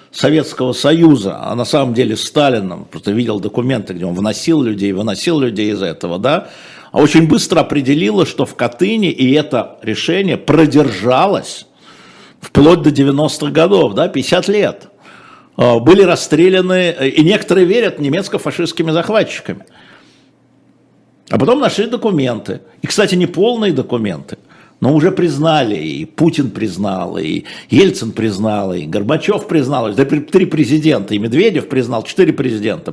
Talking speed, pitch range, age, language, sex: 135 wpm, 130-185 Hz, 60-79, Russian, male